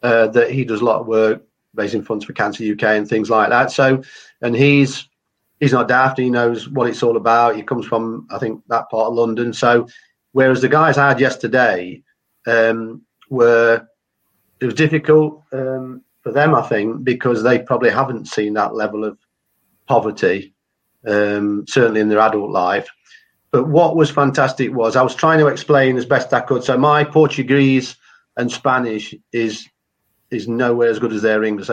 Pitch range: 115-140 Hz